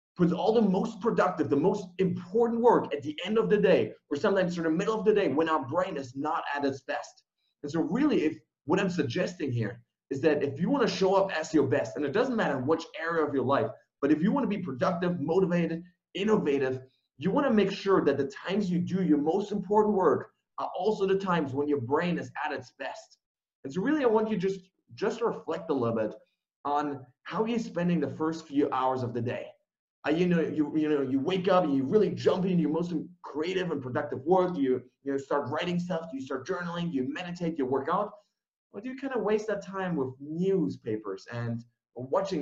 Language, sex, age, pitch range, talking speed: English, male, 30-49, 145-200 Hz, 230 wpm